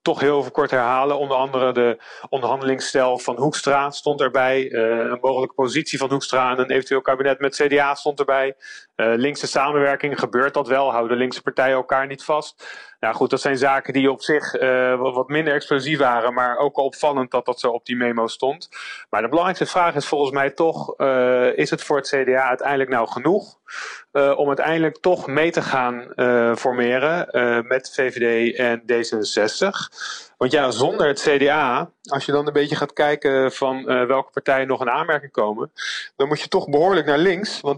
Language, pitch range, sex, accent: Dutch, 125-145 Hz, male, Dutch